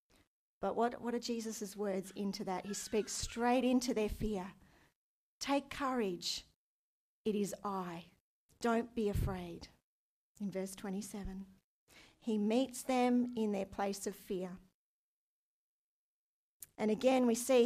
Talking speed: 125 wpm